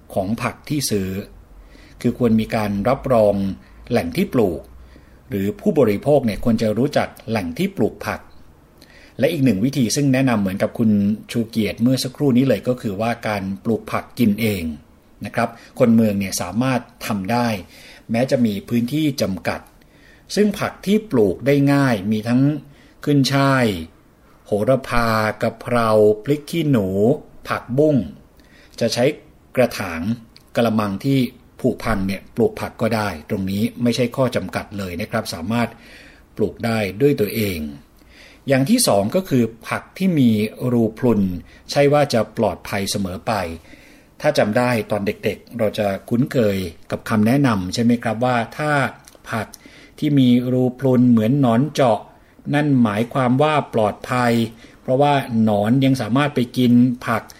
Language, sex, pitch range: Thai, male, 105-130 Hz